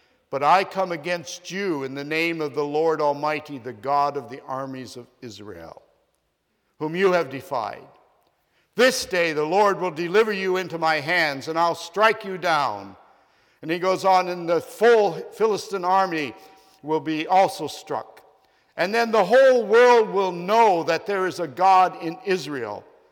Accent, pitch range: American, 150-195 Hz